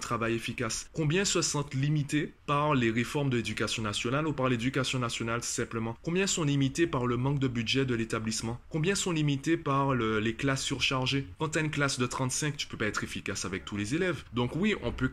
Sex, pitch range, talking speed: male, 105-140 Hz, 220 wpm